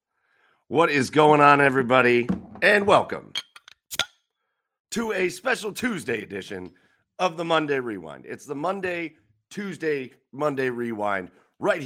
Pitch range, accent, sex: 125-160 Hz, American, male